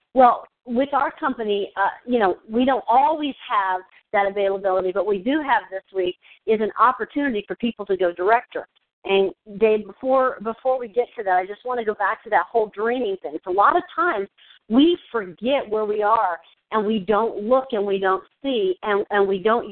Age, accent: 50-69, American